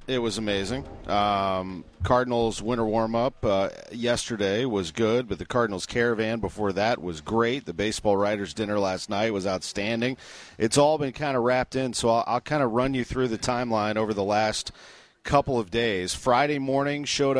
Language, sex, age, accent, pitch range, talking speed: English, male, 40-59, American, 100-125 Hz, 175 wpm